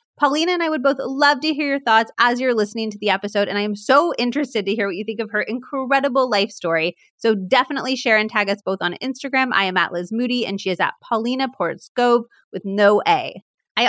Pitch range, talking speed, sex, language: 195-245 Hz, 240 wpm, female, English